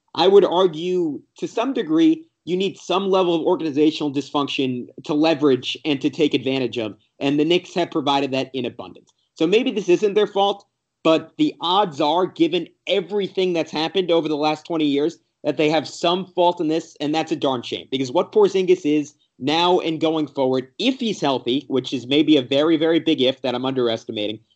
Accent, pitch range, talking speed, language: American, 145-190 Hz, 200 wpm, English